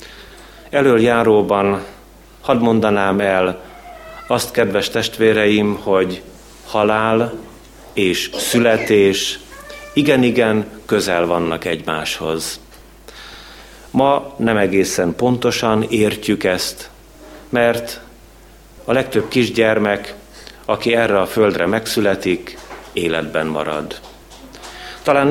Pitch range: 95-115 Hz